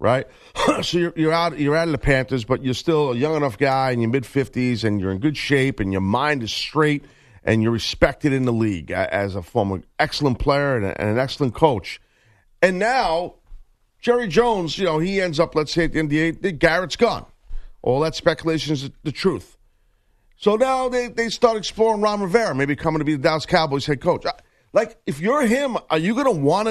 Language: English